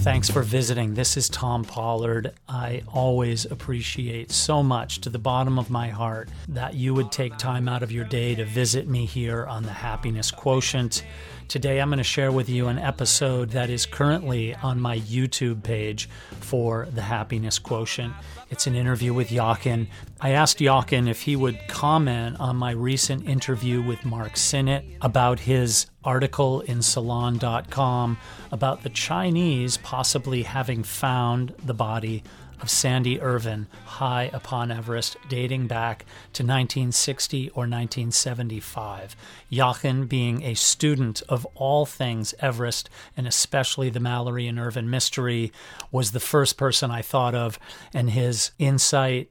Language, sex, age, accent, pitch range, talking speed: English, male, 40-59, American, 115-130 Hz, 150 wpm